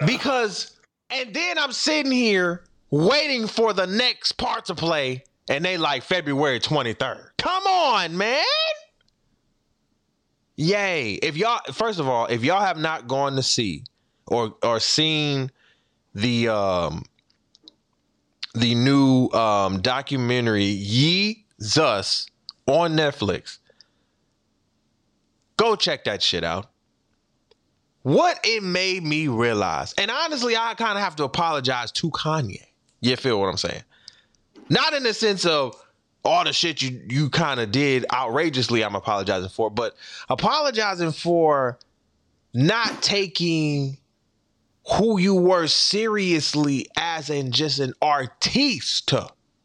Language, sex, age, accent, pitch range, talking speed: English, male, 30-49, American, 125-205 Hz, 125 wpm